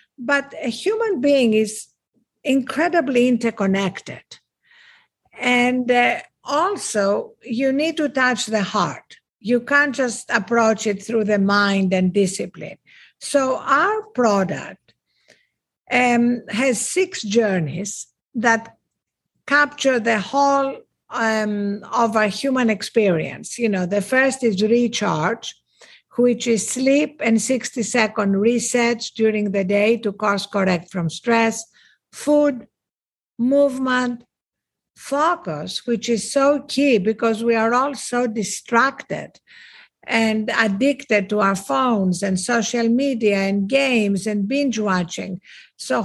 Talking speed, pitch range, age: 115 wpm, 210-260 Hz, 60-79